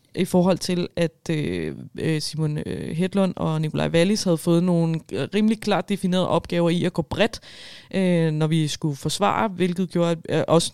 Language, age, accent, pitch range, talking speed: Danish, 20-39, native, 160-185 Hz, 150 wpm